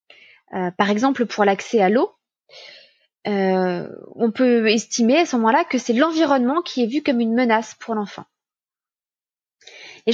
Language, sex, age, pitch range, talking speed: French, female, 20-39, 225-320 Hz, 155 wpm